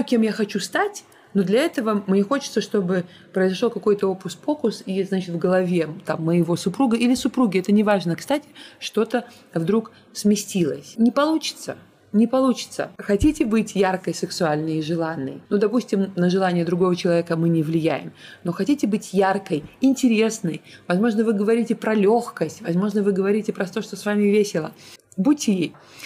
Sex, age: female, 20-39